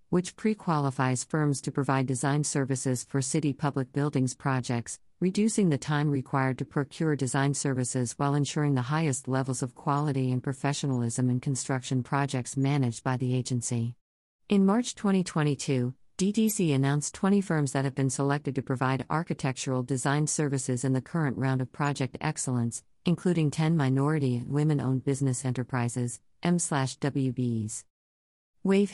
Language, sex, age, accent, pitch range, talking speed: English, female, 50-69, American, 130-155 Hz, 140 wpm